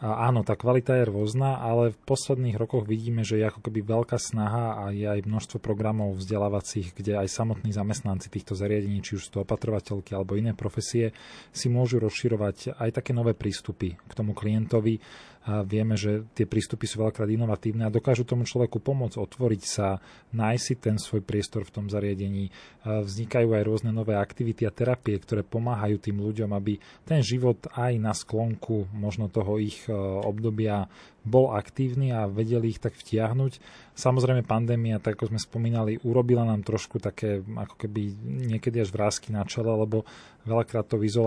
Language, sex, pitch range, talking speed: Slovak, male, 105-115 Hz, 165 wpm